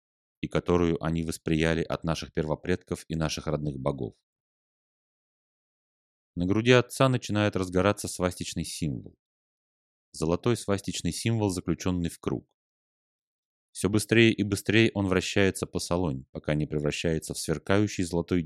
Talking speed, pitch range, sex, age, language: 125 wpm, 75-100 Hz, male, 30-49, Russian